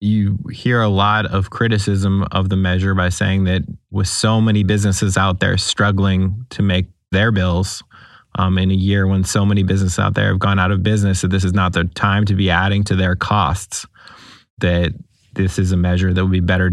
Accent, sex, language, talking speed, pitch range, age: American, male, English, 210 wpm, 95-100 Hz, 20-39